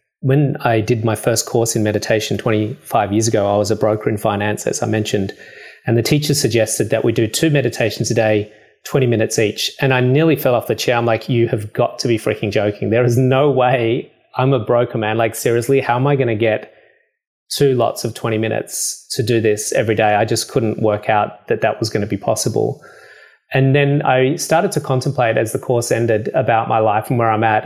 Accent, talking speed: Australian, 230 wpm